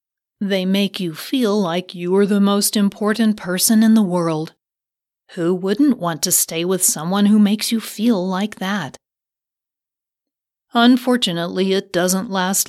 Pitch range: 170-210 Hz